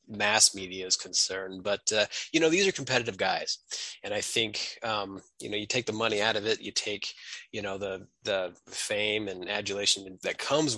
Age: 20-39